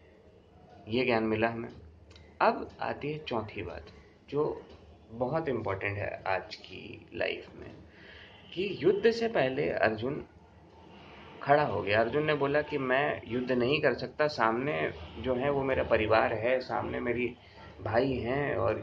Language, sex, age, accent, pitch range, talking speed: Hindi, male, 30-49, native, 100-130 Hz, 145 wpm